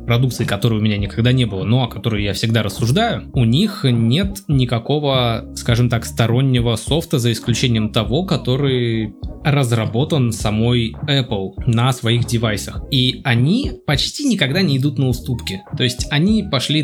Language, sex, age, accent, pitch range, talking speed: Russian, male, 20-39, native, 115-140 Hz, 155 wpm